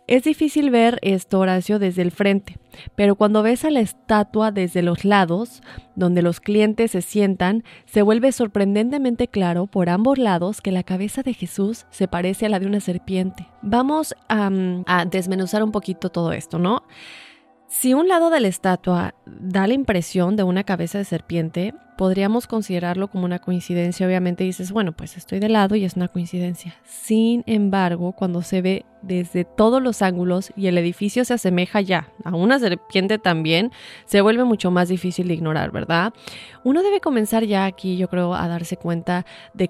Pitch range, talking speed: 180-215 Hz, 180 wpm